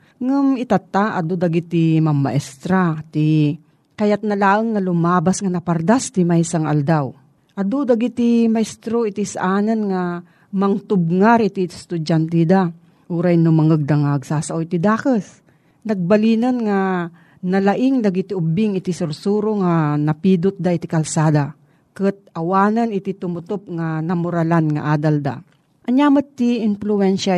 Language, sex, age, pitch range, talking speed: Filipino, female, 40-59, 160-210 Hz, 120 wpm